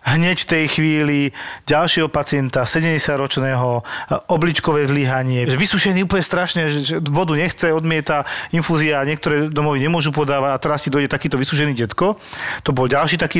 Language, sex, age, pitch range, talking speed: Slovak, male, 40-59, 135-160 Hz, 150 wpm